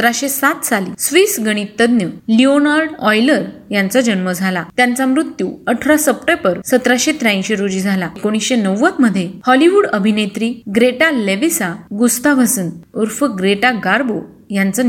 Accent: native